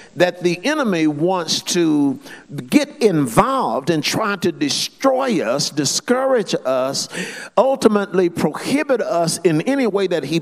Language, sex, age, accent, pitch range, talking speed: English, male, 50-69, American, 175-260 Hz, 130 wpm